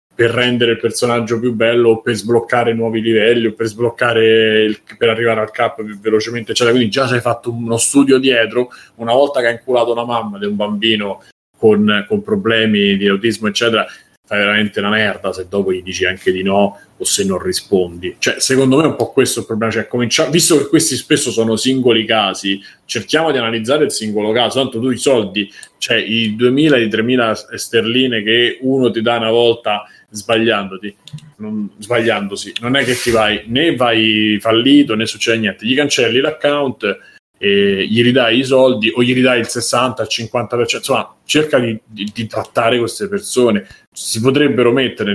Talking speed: 185 wpm